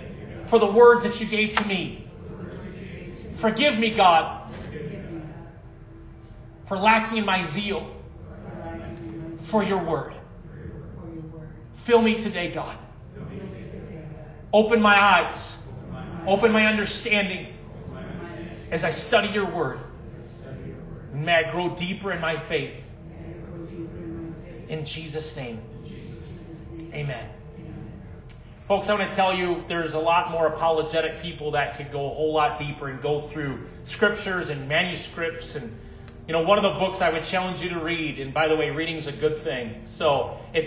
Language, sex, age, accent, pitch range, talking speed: English, male, 40-59, American, 155-190 Hz, 135 wpm